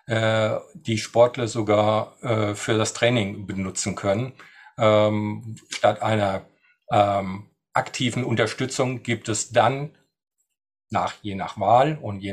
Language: German